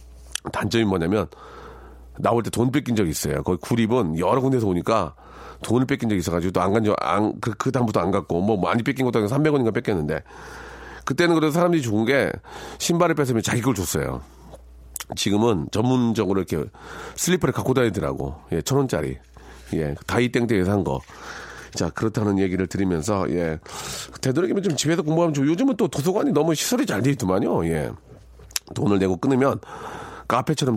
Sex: male